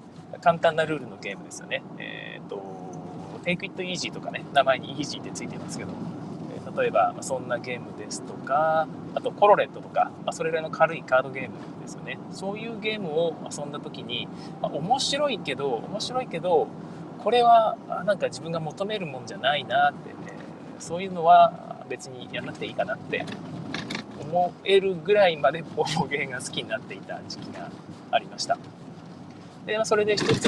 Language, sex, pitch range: Japanese, male, 145-195 Hz